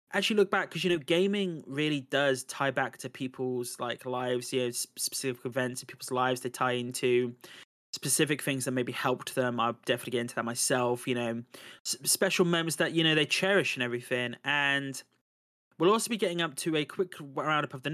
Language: English